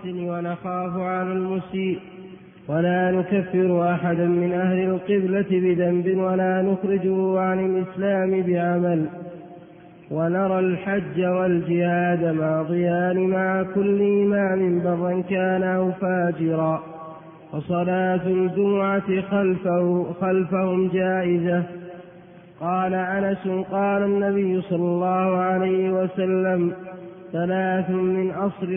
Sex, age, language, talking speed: male, 20-39, Arabic, 90 wpm